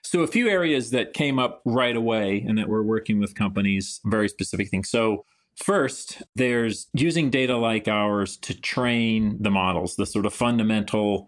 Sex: male